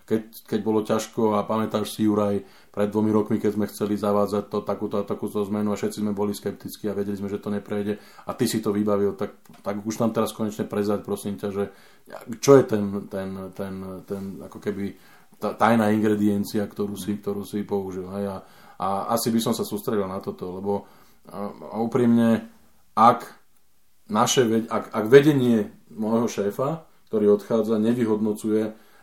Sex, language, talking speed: male, Slovak, 170 wpm